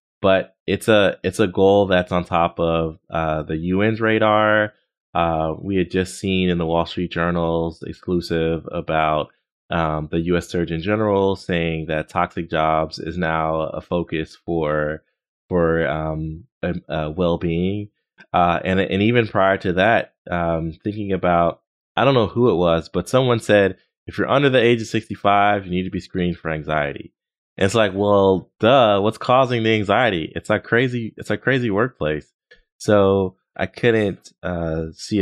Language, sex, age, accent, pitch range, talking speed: English, male, 20-39, American, 80-95 Hz, 165 wpm